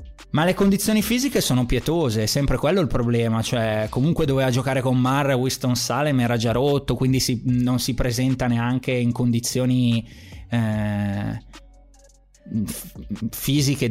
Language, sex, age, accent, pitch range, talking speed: Italian, male, 20-39, native, 115-135 Hz, 140 wpm